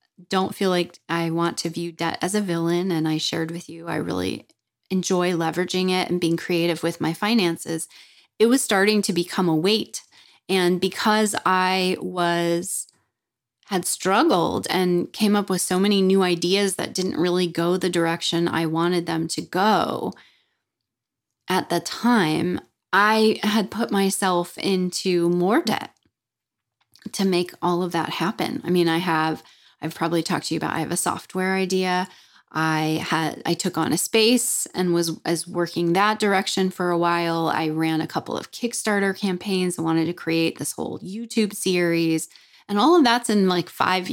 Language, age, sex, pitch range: English, 20-39, female, 165-195 Hz